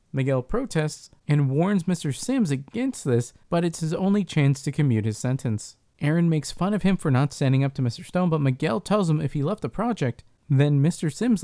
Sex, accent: male, American